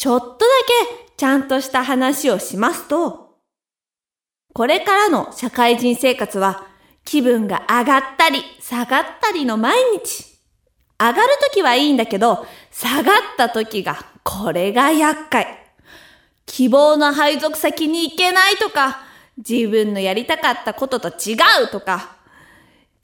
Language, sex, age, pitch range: Japanese, female, 20-39, 245-370 Hz